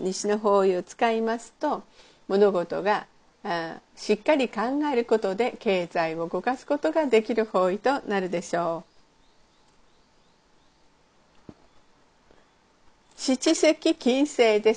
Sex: female